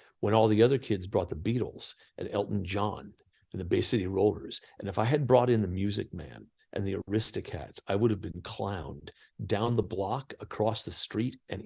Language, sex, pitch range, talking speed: English, male, 100-125 Hz, 205 wpm